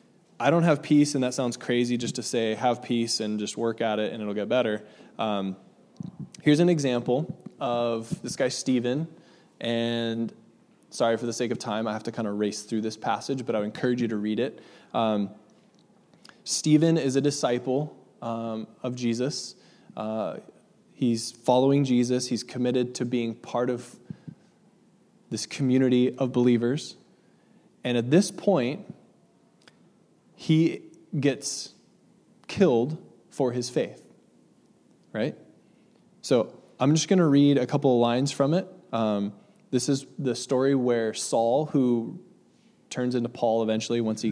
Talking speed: 155 wpm